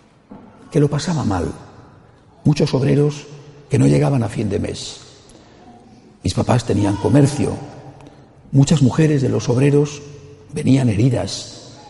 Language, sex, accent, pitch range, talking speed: Spanish, male, Spanish, 120-155 Hz, 120 wpm